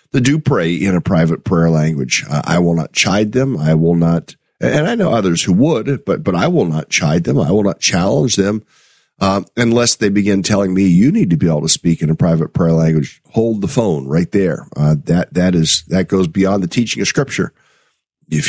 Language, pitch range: English, 85-110 Hz